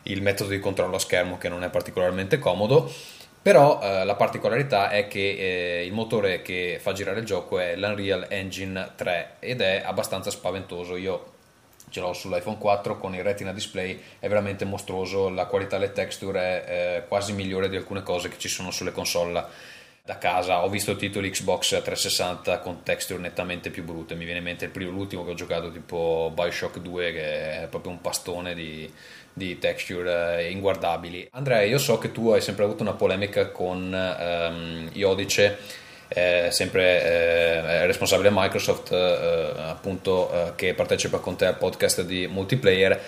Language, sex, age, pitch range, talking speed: Italian, male, 20-39, 90-105 Hz, 175 wpm